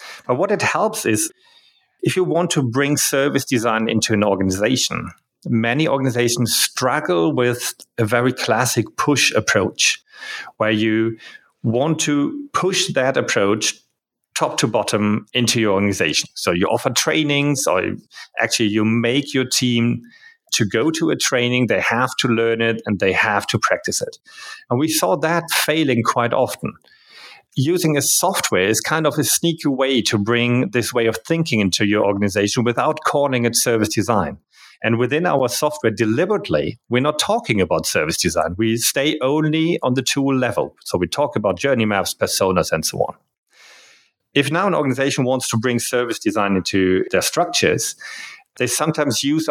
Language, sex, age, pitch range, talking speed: English, male, 40-59, 115-150 Hz, 165 wpm